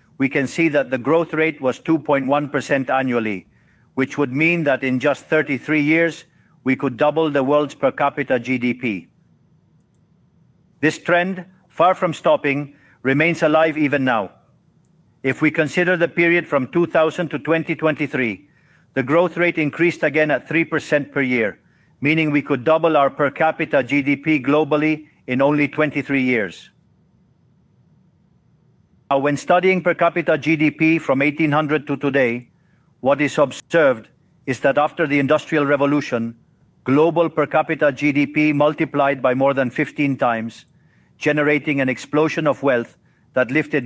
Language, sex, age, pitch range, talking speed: English, male, 50-69, 140-160 Hz, 140 wpm